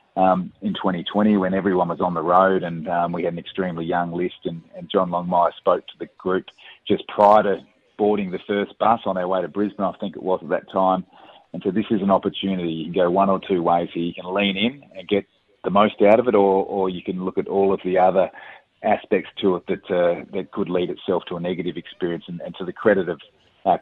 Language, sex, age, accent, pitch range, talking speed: English, male, 30-49, Australian, 85-100 Hz, 245 wpm